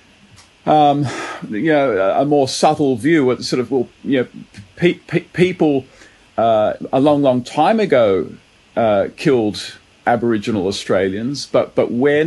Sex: male